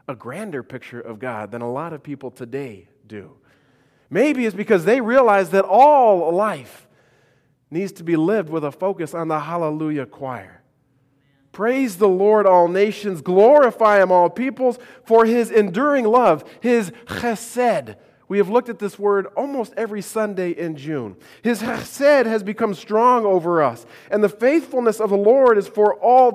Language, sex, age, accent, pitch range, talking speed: English, male, 40-59, American, 135-225 Hz, 165 wpm